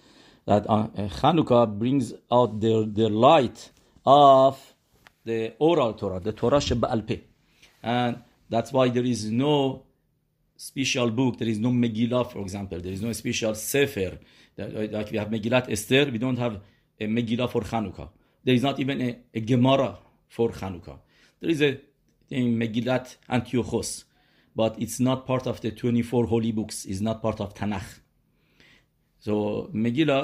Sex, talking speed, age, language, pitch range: male, 160 wpm, 50-69, English, 105-125 Hz